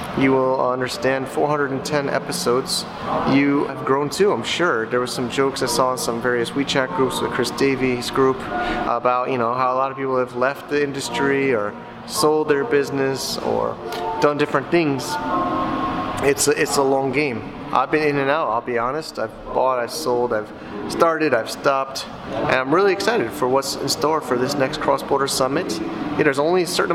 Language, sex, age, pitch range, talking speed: English, male, 30-49, 125-150 Hz, 190 wpm